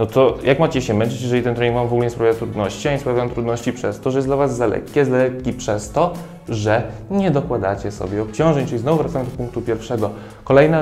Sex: male